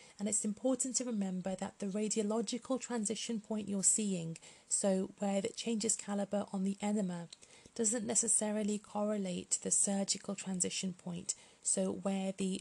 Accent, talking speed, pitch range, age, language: British, 150 wpm, 190-220 Hz, 30-49, English